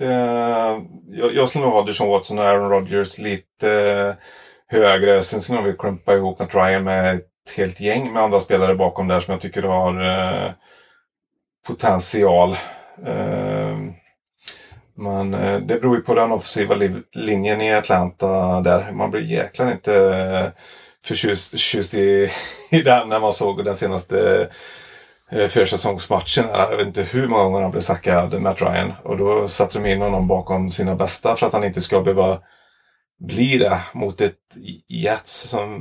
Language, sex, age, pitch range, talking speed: Swedish, male, 30-49, 95-105 Hz, 155 wpm